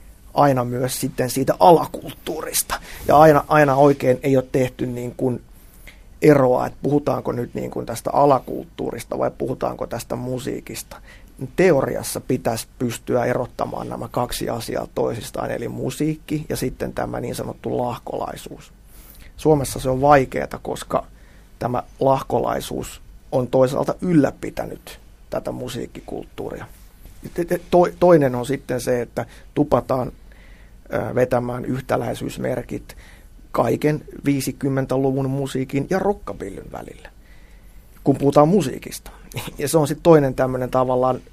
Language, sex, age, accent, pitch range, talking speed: Finnish, male, 30-49, native, 125-145 Hz, 110 wpm